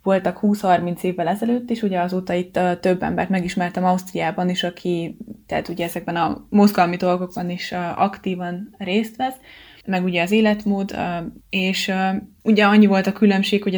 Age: 20-39